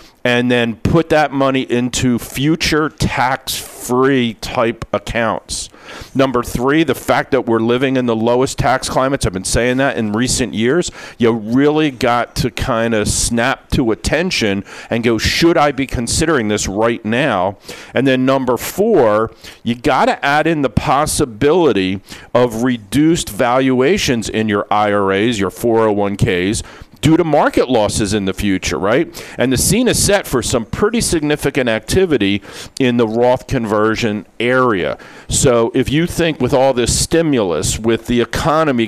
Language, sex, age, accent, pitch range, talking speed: English, male, 50-69, American, 115-140 Hz, 155 wpm